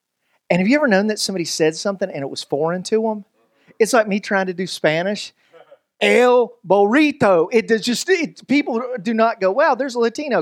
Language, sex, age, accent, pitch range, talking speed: English, male, 40-59, American, 185-245 Hz, 205 wpm